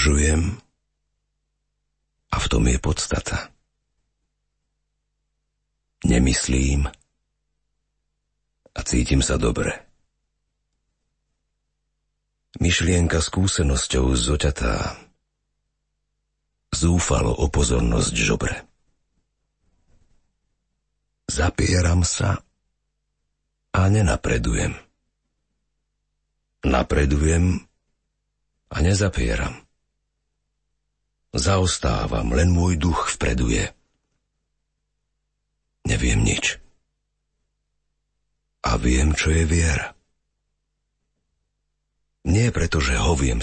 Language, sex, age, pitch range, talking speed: Slovak, male, 50-69, 70-90 Hz, 55 wpm